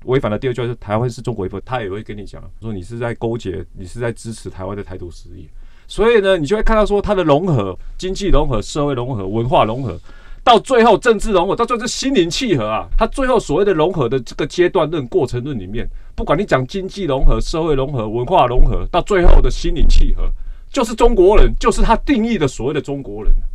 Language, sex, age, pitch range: Chinese, male, 30-49, 105-170 Hz